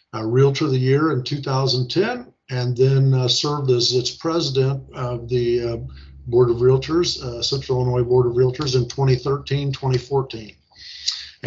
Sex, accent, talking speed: male, American, 145 wpm